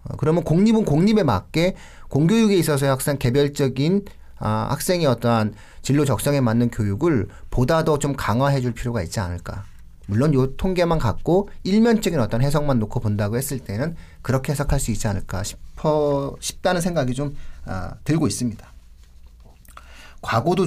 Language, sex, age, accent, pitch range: Korean, male, 40-59, native, 115-160 Hz